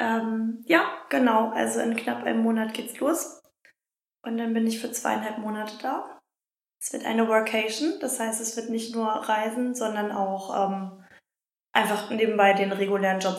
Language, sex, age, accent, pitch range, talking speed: German, female, 10-29, German, 200-240 Hz, 160 wpm